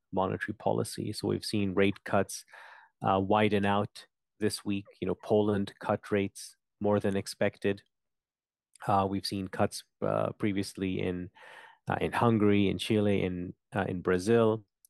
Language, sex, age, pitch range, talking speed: English, male, 30-49, 100-110 Hz, 145 wpm